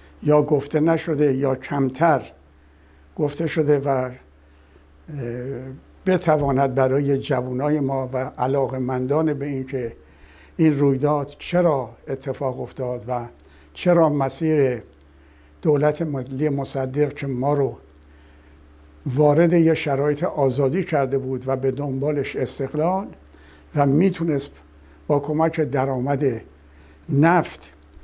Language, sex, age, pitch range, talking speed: Persian, male, 60-79, 120-150 Hz, 100 wpm